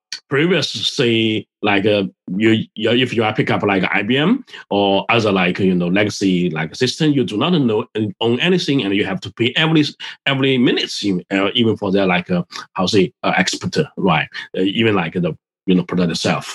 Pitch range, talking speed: 100-140 Hz, 195 wpm